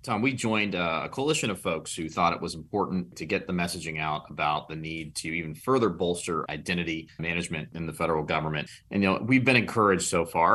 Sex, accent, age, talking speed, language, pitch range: male, American, 30-49, 215 wpm, English, 85-100 Hz